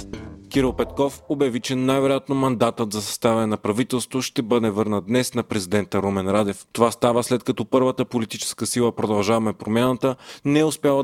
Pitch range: 110-130 Hz